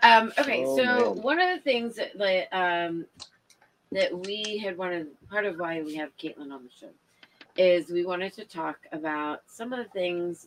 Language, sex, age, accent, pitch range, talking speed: English, female, 30-49, American, 150-195 Hz, 185 wpm